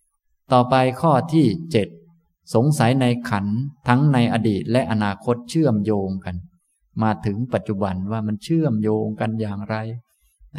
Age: 20-39